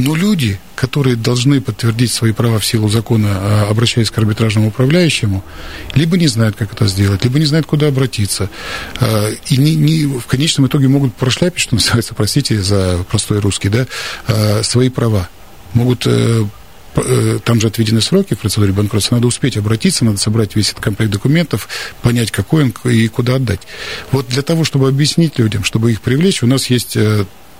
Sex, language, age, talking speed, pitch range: male, Russian, 50-69, 165 wpm, 105-130 Hz